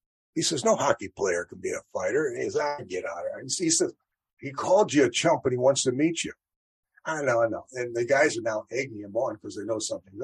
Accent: American